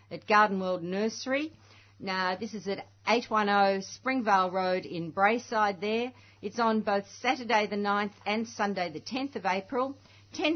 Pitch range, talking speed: 185-230 Hz, 155 wpm